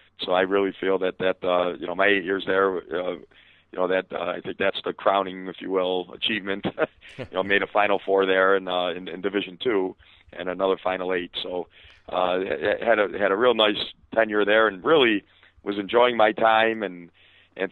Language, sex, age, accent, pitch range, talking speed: English, male, 40-59, American, 95-105 Hz, 215 wpm